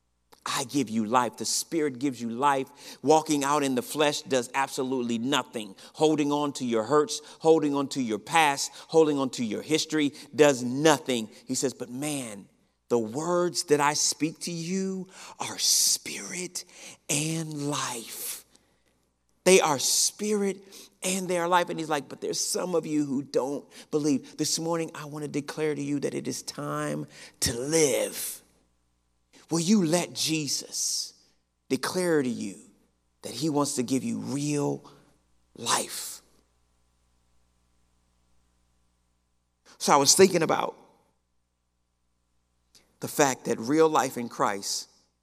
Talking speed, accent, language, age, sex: 145 wpm, American, English, 40-59, male